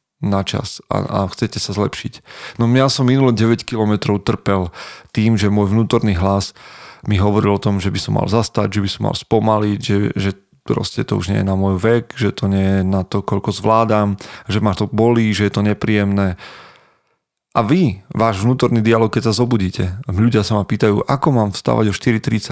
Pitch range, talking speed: 100-120 Hz, 200 wpm